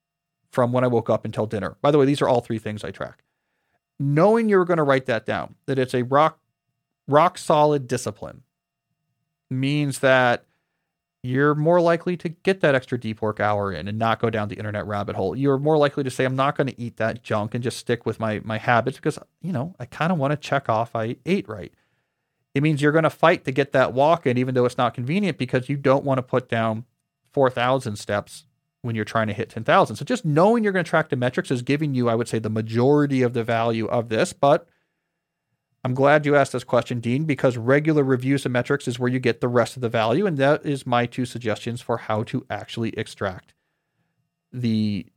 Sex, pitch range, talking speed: male, 115-145 Hz, 225 wpm